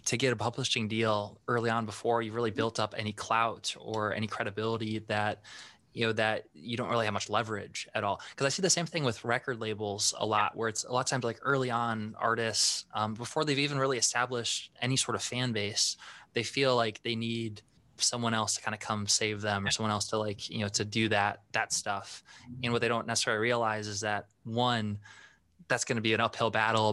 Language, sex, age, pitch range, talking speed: English, male, 20-39, 105-120 Hz, 225 wpm